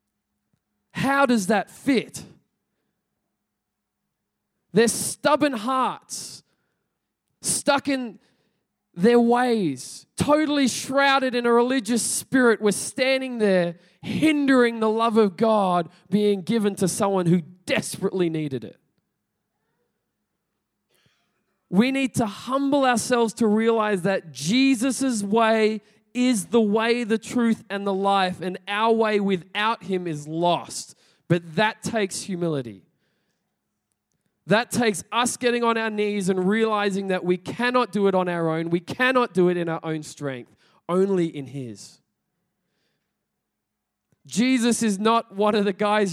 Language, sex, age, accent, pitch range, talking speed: English, male, 20-39, Australian, 180-240 Hz, 125 wpm